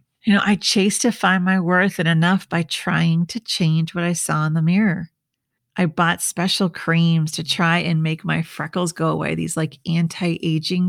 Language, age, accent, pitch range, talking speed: English, 40-59, American, 160-185 Hz, 195 wpm